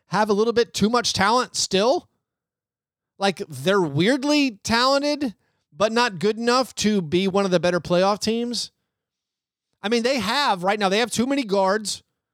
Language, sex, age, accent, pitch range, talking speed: English, male, 30-49, American, 170-215 Hz, 170 wpm